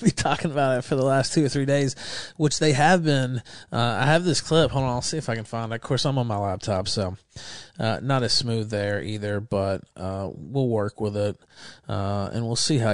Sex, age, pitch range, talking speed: male, 30-49, 105-135 Hz, 240 wpm